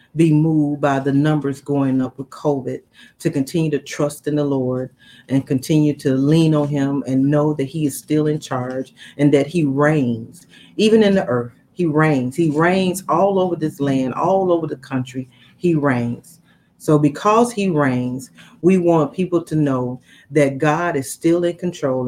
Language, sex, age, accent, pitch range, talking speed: English, female, 40-59, American, 140-170 Hz, 180 wpm